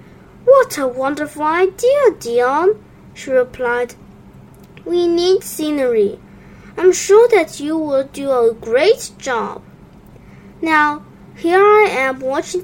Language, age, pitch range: Chinese, 20-39, 275-375 Hz